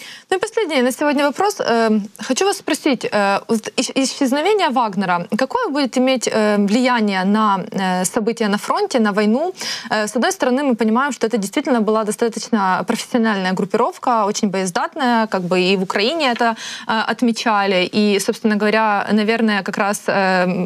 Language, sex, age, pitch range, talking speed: Ukrainian, female, 20-39, 205-245 Hz, 140 wpm